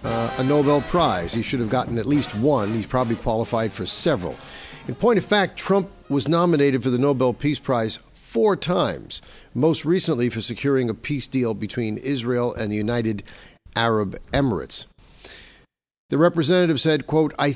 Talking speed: 165 wpm